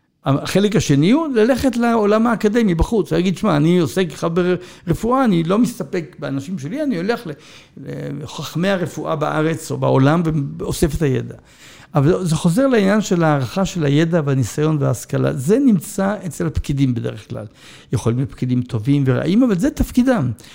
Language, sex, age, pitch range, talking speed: Hebrew, male, 60-79, 140-205 Hz, 150 wpm